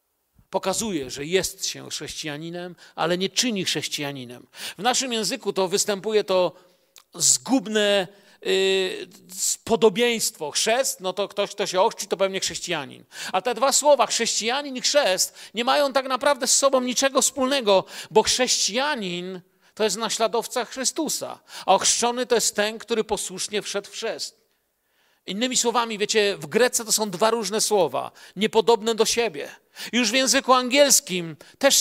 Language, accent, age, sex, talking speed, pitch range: Polish, native, 40-59, male, 145 wpm, 195-255 Hz